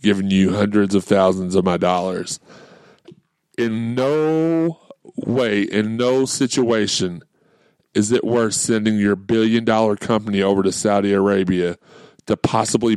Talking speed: 125 wpm